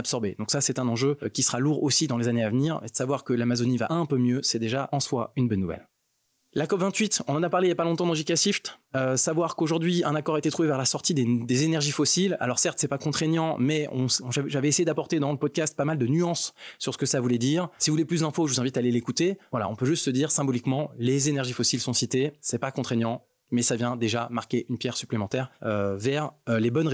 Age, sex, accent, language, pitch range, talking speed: 20-39, male, French, French, 120-150 Hz, 280 wpm